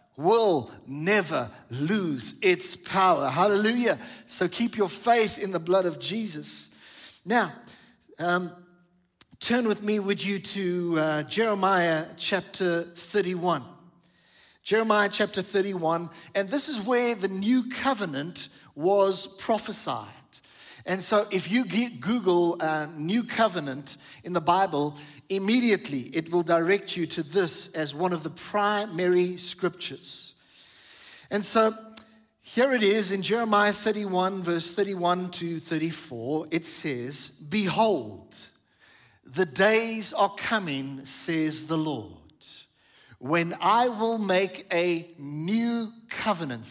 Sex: male